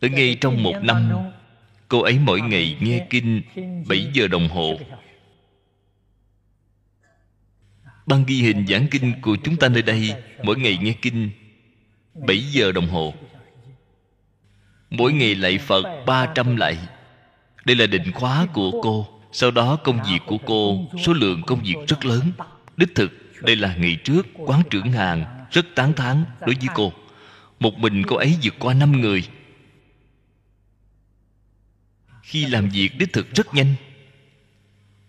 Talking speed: 150 wpm